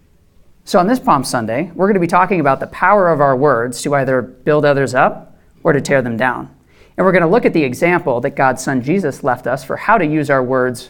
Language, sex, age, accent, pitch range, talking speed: English, male, 40-59, American, 135-175 Hz, 255 wpm